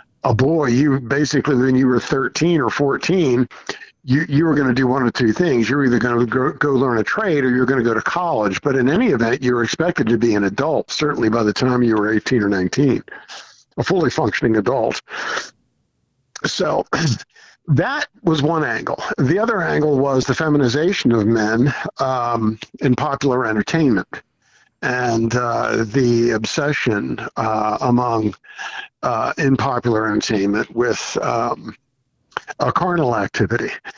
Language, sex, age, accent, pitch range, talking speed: English, male, 50-69, American, 120-145 Hz, 160 wpm